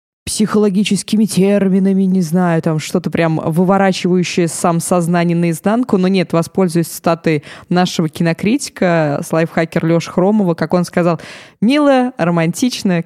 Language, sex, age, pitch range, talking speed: Russian, female, 20-39, 170-200 Hz, 115 wpm